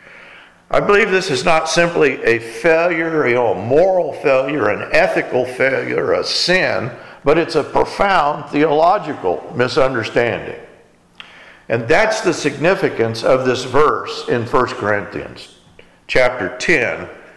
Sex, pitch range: male, 135-175 Hz